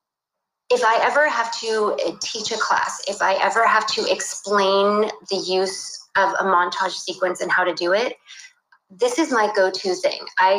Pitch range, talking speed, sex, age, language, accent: 185-230 Hz, 175 wpm, female, 30-49, English, American